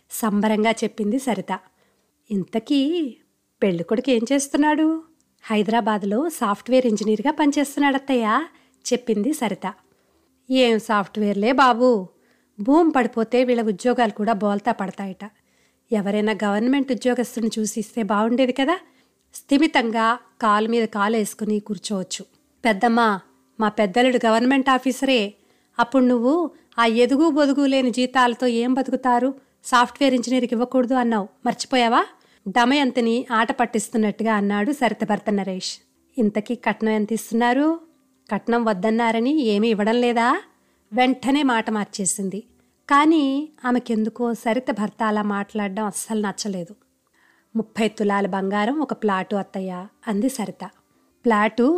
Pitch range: 210-255 Hz